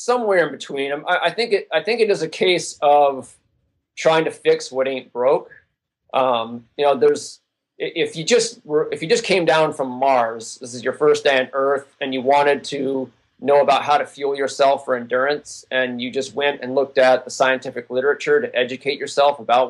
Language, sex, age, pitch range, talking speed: English, male, 30-49, 130-170 Hz, 200 wpm